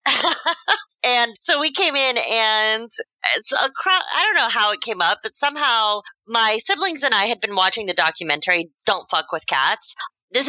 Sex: female